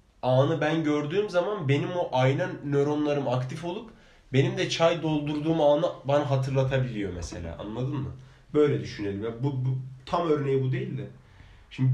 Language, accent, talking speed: Turkish, native, 150 wpm